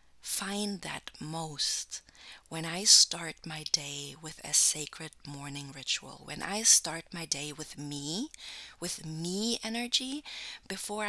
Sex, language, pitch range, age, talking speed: female, English, 145-185 Hz, 30-49, 130 wpm